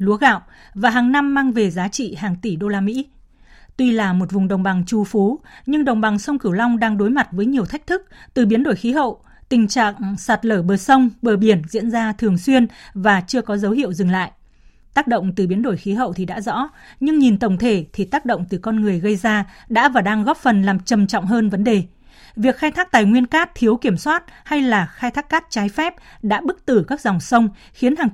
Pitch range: 200-255 Hz